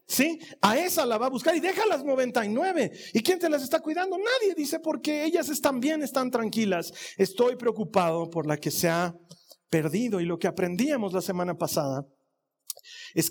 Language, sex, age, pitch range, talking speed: Spanish, male, 40-59, 175-245 Hz, 185 wpm